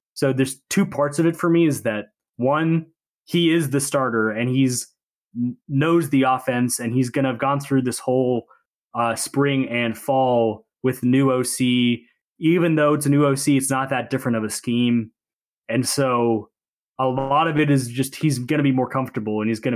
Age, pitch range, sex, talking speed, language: 20-39, 120-145 Hz, male, 200 wpm, English